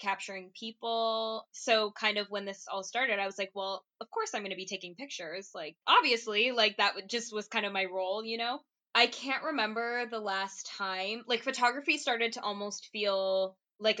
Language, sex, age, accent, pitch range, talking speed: English, female, 10-29, American, 190-230 Hz, 195 wpm